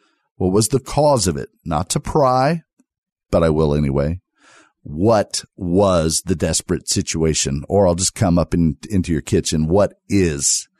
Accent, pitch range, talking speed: American, 80-100 Hz, 155 wpm